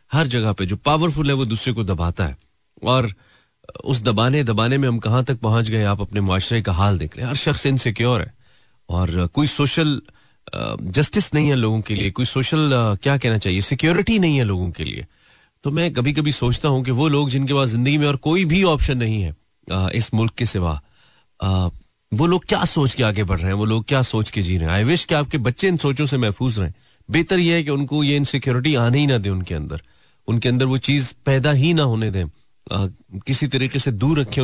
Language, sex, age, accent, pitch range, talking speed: Hindi, male, 30-49, native, 100-140 Hz, 230 wpm